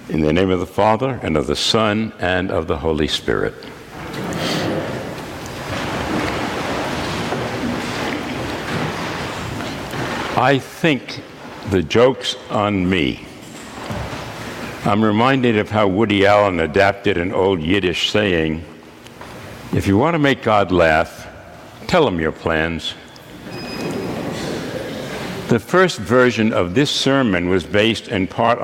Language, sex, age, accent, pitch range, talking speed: English, male, 60-79, American, 90-120 Hz, 110 wpm